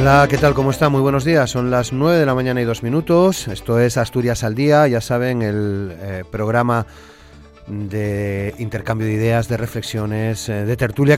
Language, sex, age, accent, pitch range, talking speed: Spanish, male, 30-49, Spanish, 105-125 Hz, 195 wpm